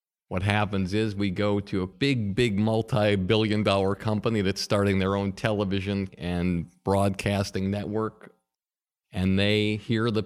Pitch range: 95-110 Hz